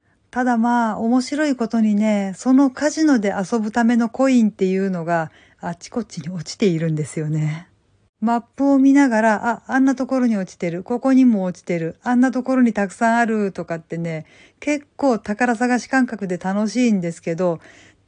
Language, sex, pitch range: Japanese, female, 185-235 Hz